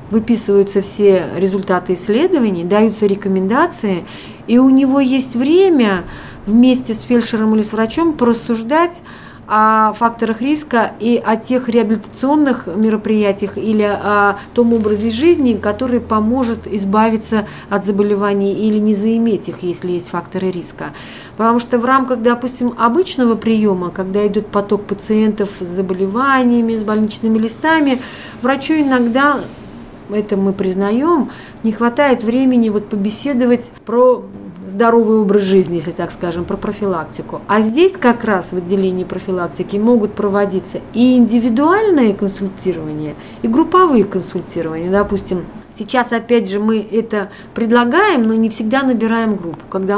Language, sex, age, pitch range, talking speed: Russian, female, 40-59, 195-240 Hz, 125 wpm